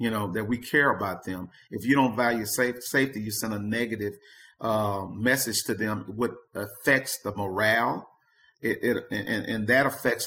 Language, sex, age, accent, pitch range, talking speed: English, male, 40-59, American, 110-130 Hz, 180 wpm